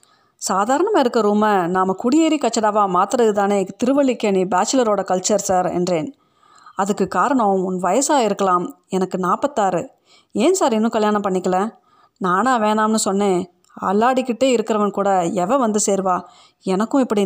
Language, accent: Tamil, native